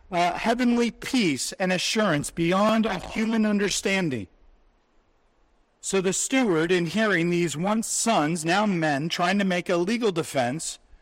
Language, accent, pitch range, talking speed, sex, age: English, American, 160-200 Hz, 135 wpm, male, 50-69